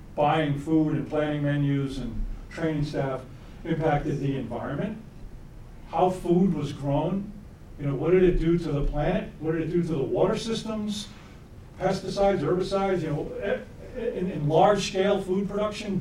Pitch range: 140-185 Hz